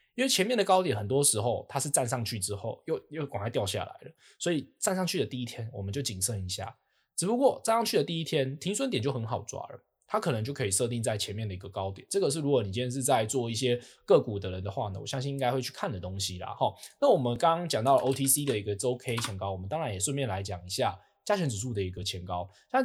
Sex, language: male, Chinese